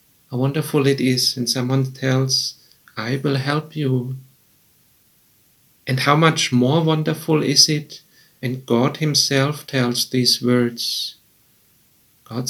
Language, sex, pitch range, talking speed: English, male, 130-150 Hz, 115 wpm